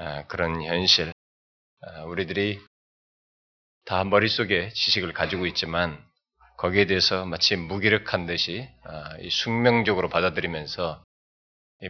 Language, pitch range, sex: Korean, 80-105 Hz, male